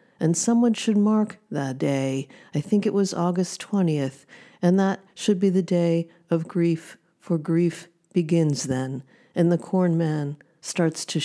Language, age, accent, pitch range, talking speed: English, 50-69, American, 150-185 Hz, 160 wpm